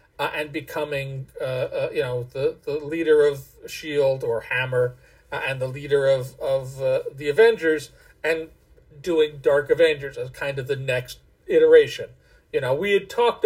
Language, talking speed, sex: English, 170 wpm, male